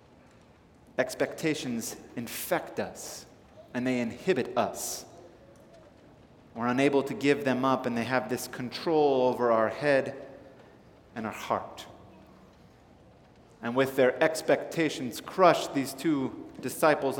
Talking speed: 110 wpm